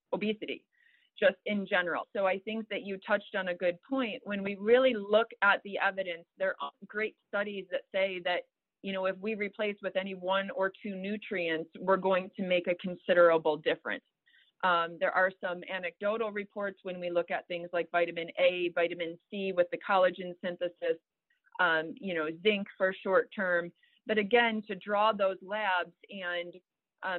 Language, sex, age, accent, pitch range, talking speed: English, female, 30-49, American, 175-205 Hz, 180 wpm